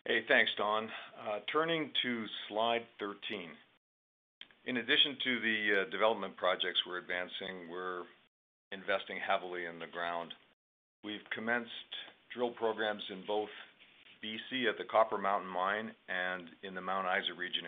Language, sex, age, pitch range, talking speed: English, male, 50-69, 90-105 Hz, 140 wpm